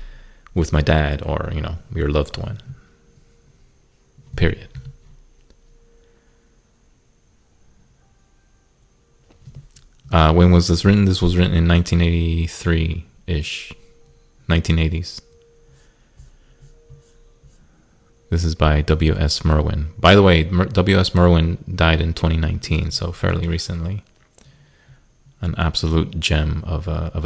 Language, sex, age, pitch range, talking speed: English, male, 30-49, 80-90 Hz, 90 wpm